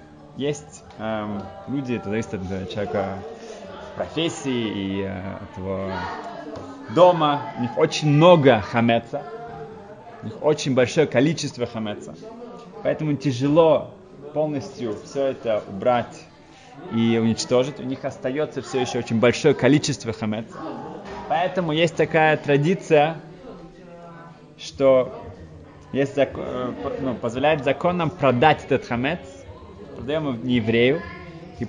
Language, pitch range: Russian, 105-160 Hz